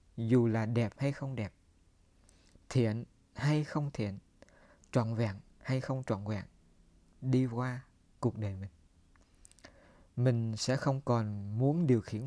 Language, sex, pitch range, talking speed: Vietnamese, male, 100-140 Hz, 135 wpm